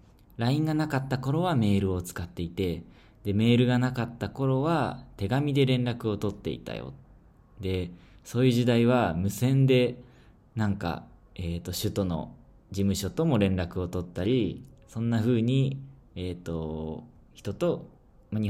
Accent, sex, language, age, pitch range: native, male, Japanese, 20-39, 90-125 Hz